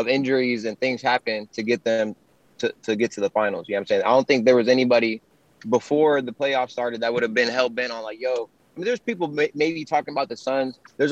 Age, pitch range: 20-39, 125-155 Hz